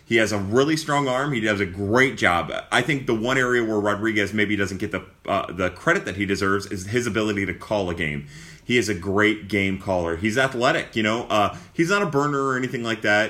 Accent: American